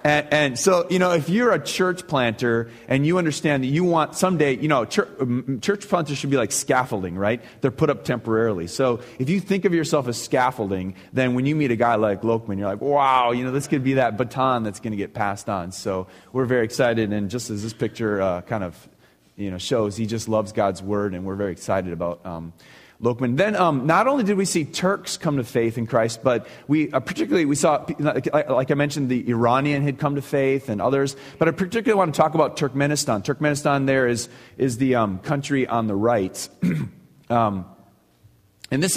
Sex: male